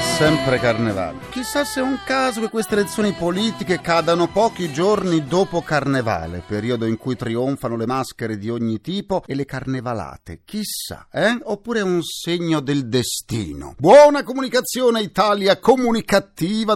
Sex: male